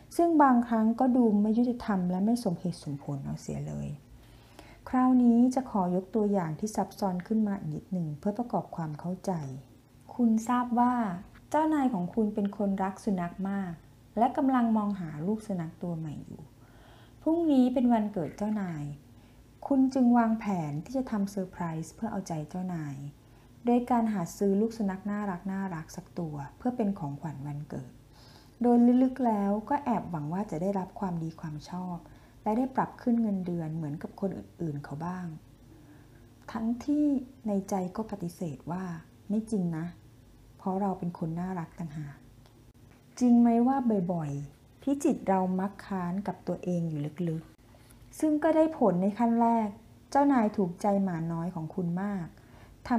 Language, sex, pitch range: Thai, female, 150-225 Hz